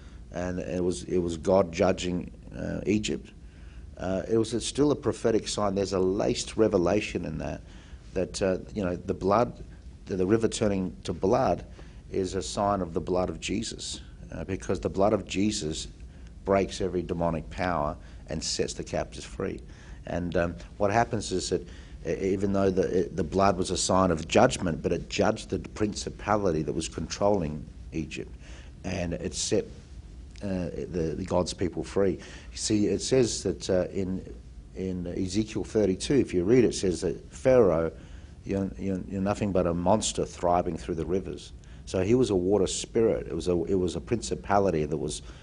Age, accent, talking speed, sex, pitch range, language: 50-69, Australian, 180 wpm, male, 80-100 Hz, English